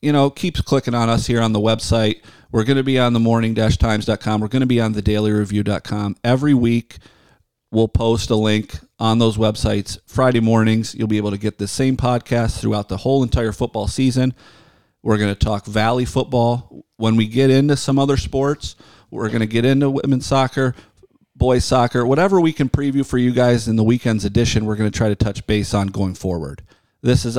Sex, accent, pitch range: male, American, 105-125 Hz